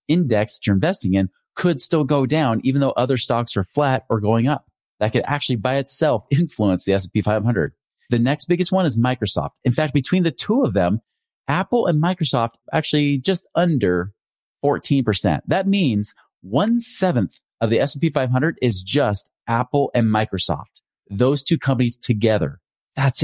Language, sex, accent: English, male, American